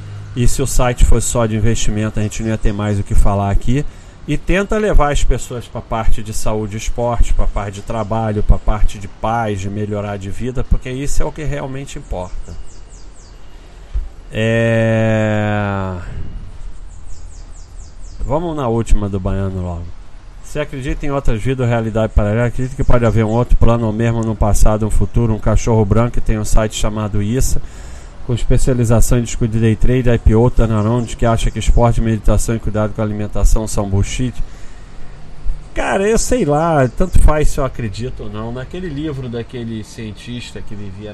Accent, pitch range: Brazilian, 100-120 Hz